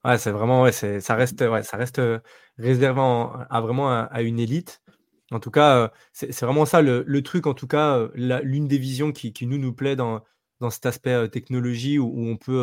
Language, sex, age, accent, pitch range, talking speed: French, male, 20-39, French, 115-135 Hz, 250 wpm